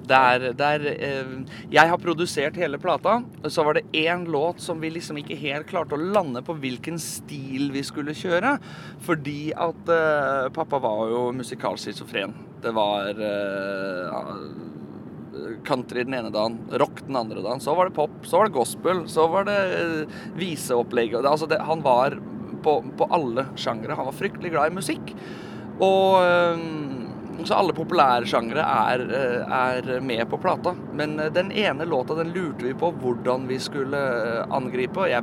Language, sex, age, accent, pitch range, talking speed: English, male, 20-39, Swedish, 130-180 Hz, 155 wpm